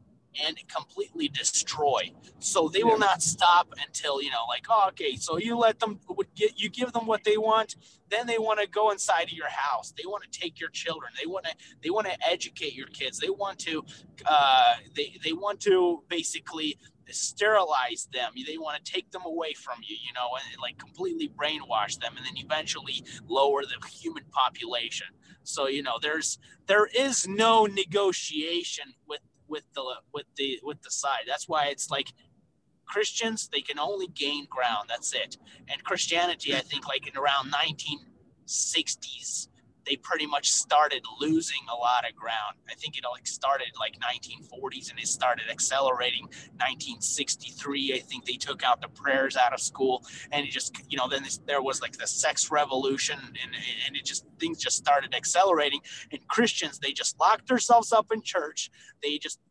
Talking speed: 180 wpm